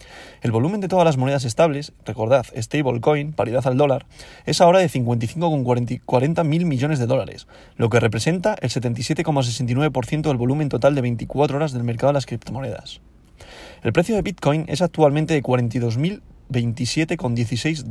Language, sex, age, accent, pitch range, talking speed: Spanish, male, 30-49, Spanish, 125-160 Hz, 145 wpm